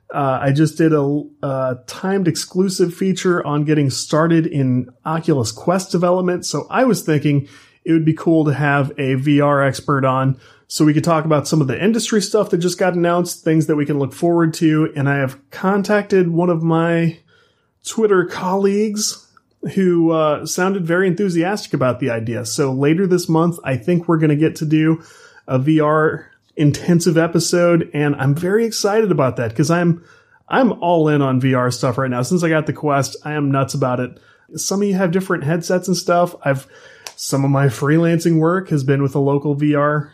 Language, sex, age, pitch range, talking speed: English, male, 30-49, 145-180 Hz, 195 wpm